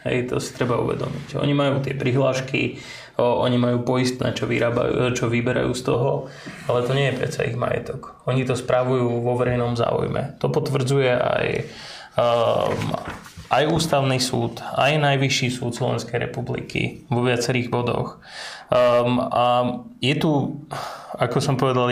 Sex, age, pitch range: male, 20-39, 120-135 Hz